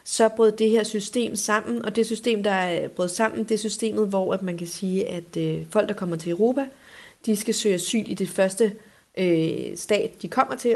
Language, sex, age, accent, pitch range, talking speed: Danish, female, 30-49, native, 185-225 Hz, 205 wpm